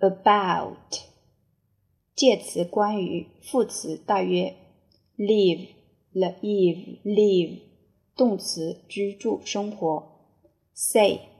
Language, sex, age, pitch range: Chinese, female, 30-49, 170-215 Hz